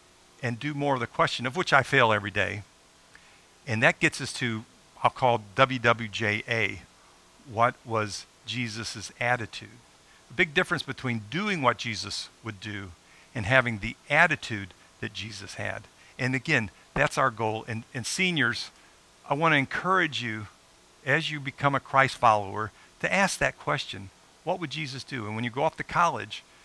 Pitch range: 110-140 Hz